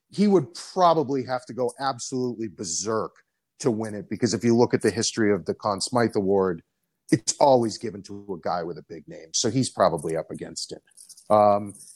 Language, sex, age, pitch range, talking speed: English, male, 40-59, 110-145 Hz, 200 wpm